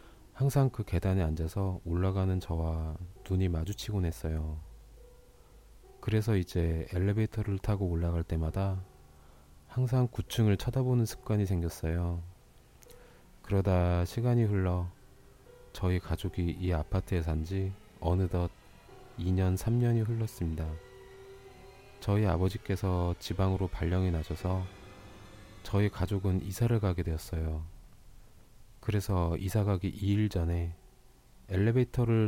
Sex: male